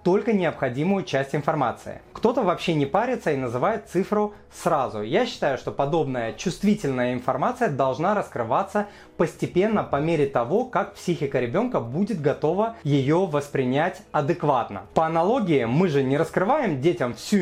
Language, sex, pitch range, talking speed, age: Russian, male, 140-190 Hz, 140 wpm, 30-49